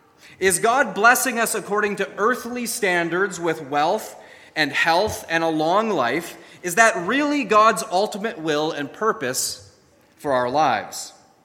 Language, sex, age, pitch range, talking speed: English, male, 30-49, 155-205 Hz, 140 wpm